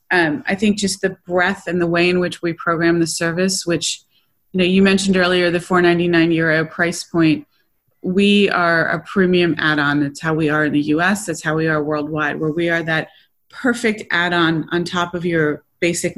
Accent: American